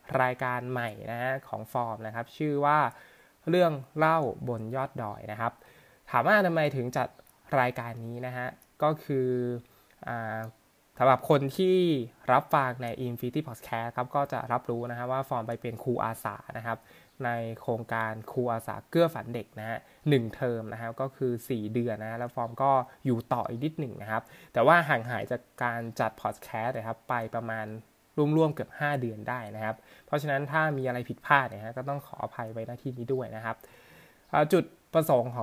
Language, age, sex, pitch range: Thai, 20-39, male, 115-135 Hz